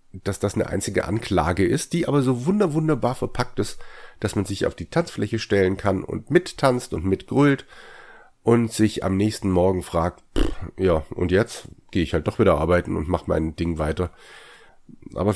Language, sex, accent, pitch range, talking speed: German, male, German, 95-120 Hz, 185 wpm